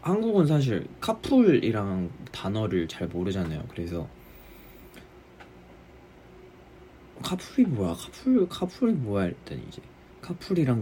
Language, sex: Korean, male